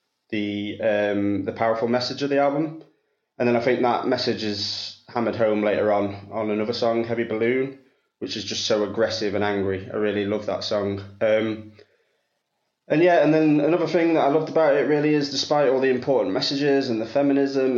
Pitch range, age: 105-120 Hz, 20-39